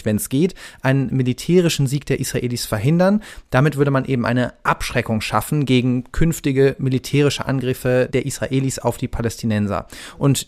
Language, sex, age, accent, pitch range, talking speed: German, male, 30-49, German, 125-160 Hz, 150 wpm